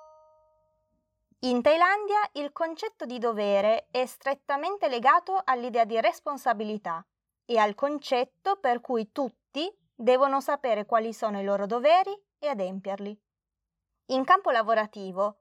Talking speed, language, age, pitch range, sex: 115 wpm, Italian, 20-39, 205-285 Hz, female